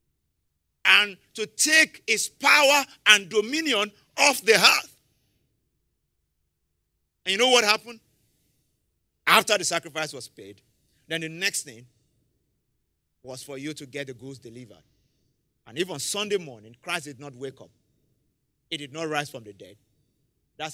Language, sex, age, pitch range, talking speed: English, male, 50-69, 125-200 Hz, 140 wpm